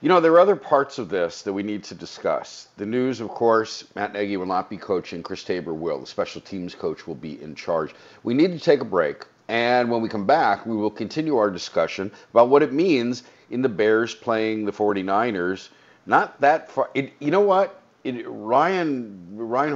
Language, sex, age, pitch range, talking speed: English, male, 50-69, 90-120 Hz, 215 wpm